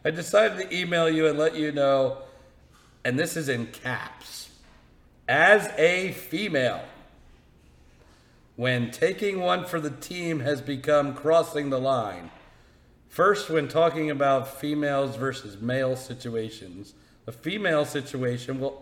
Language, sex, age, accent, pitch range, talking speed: English, male, 50-69, American, 105-150 Hz, 130 wpm